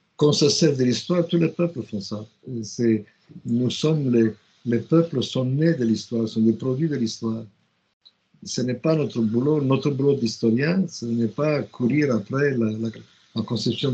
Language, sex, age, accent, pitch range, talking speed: French, male, 60-79, Italian, 110-140 Hz, 180 wpm